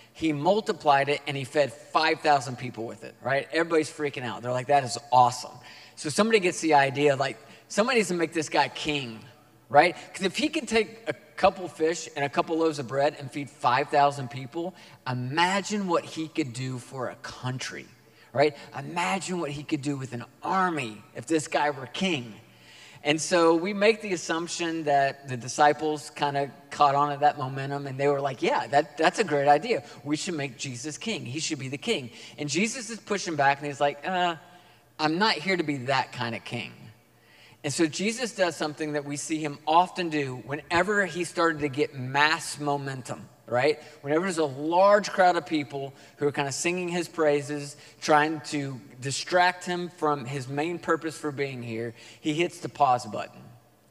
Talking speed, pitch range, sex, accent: 195 wpm, 135-165 Hz, male, American